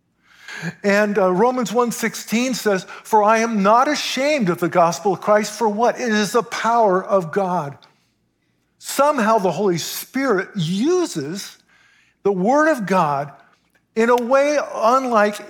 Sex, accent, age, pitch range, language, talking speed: male, American, 50-69, 145-210 Hz, English, 135 wpm